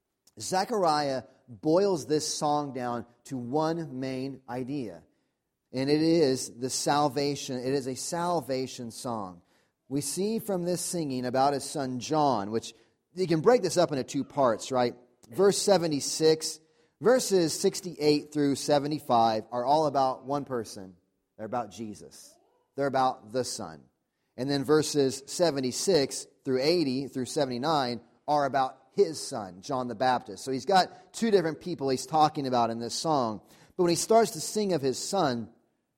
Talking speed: 155 wpm